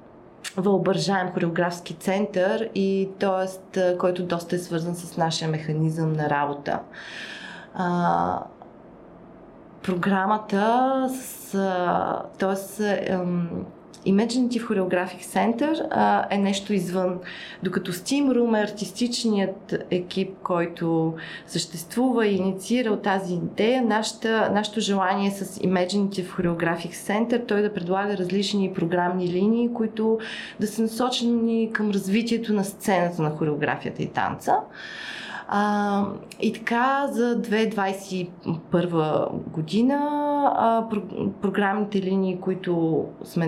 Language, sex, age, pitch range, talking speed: Bulgarian, female, 20-39, 180-220 Hz, 100 wpm